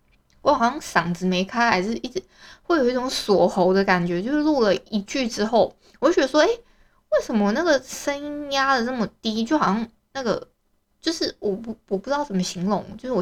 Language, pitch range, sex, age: Chinese, 195-265 Hz, female, 20-39